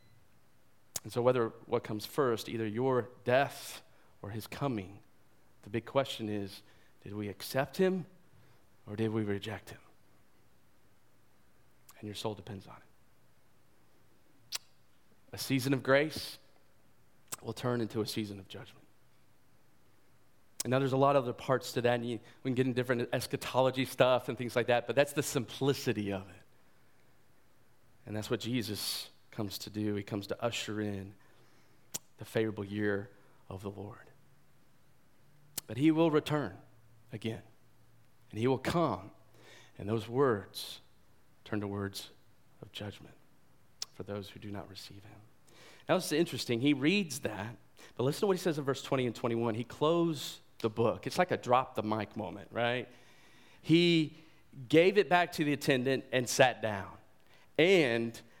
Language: English